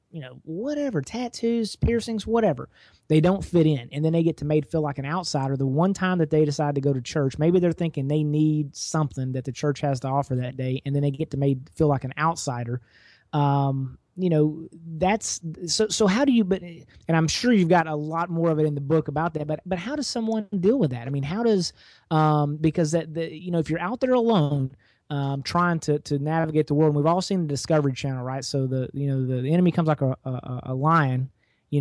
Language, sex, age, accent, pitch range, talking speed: English, male, 30-49, American, 140-175 Hz, 245 wpm